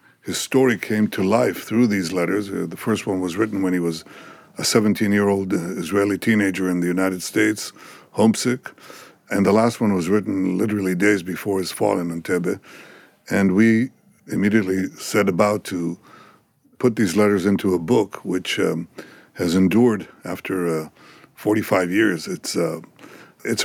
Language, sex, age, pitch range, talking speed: English, male, 60-79, 90-105 Hz, 155 wpm